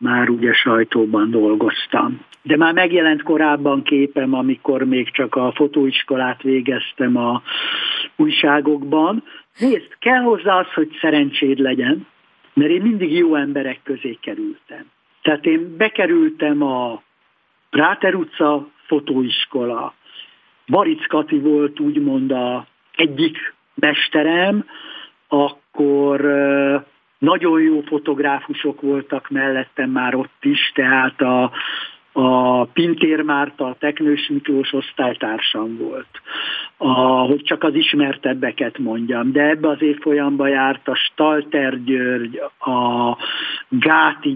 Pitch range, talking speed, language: 130-160 Hz, 110 wpm, Hungarian